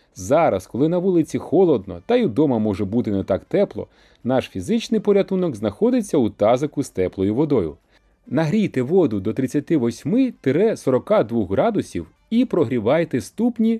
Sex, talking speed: male, 130 wpm